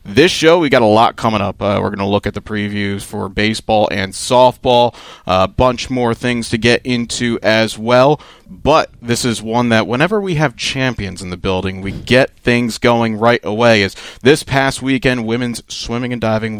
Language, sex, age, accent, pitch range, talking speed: English, male, 30-49, American, 105-125 Hz, 200 wpm